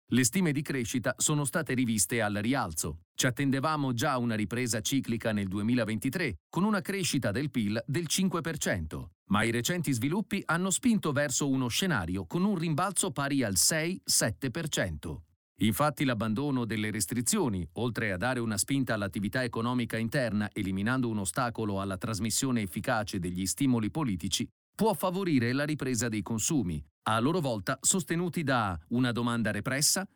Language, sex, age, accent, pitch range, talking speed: Italian, male, 40-59, native, 110-150 Hz, 145 wpm